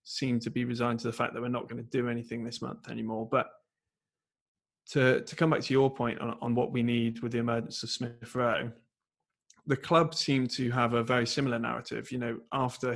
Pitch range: 115-130 Hz